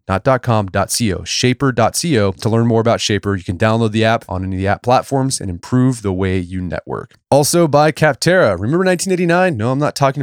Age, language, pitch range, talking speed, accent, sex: 20-39, English, 105-135 Hz, 195 wpm, American, male